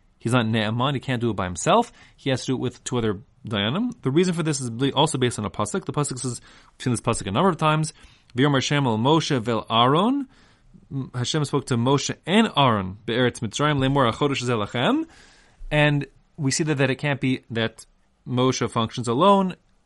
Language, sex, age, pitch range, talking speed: English, male, 30-49, 115-145 Hz, 170 wpm